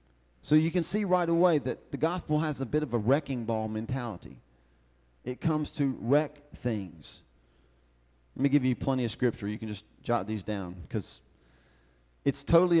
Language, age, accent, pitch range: English, 40-59, American, 95-145 Hz